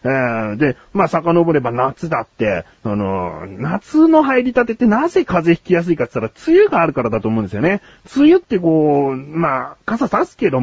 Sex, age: male, 30-49